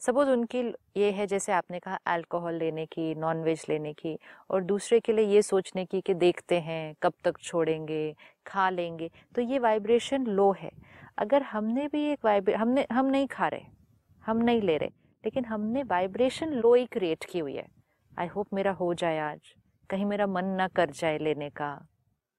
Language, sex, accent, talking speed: Hindi, female, native, 190 wpm